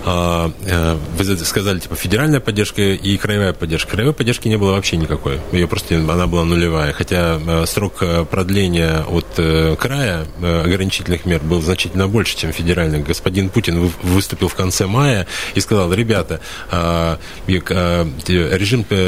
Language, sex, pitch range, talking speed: Russian, male, 85-105 Hz, 130 wpm